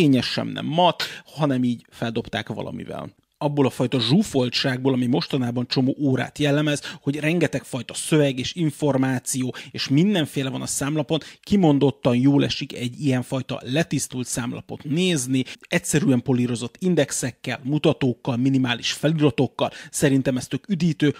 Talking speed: 125 wpm